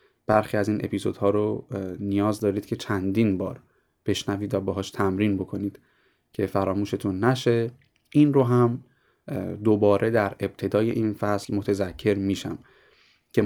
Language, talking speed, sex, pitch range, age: Persian, 135 wpm, male, 100-120 Hz, 30-49